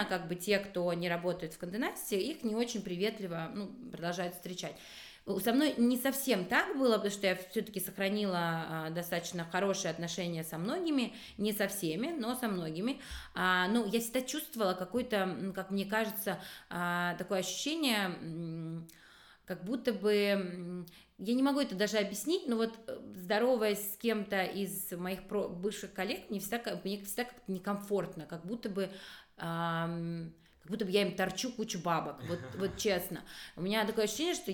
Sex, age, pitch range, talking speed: female, 20-39, 175-220 Hz, 160 wpm